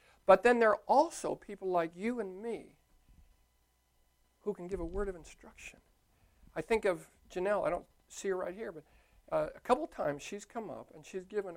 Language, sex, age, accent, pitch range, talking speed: English, male, 60-79, American, 160-245 Hz, 195 wpm